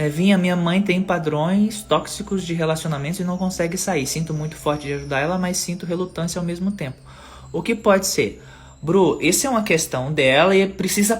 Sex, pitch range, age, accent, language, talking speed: male, 130-190 Hz, 20-39, Brazilian, Portuguese, 200 wpm